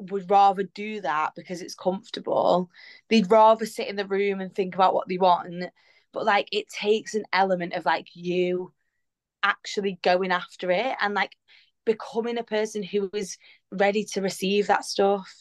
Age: 20-39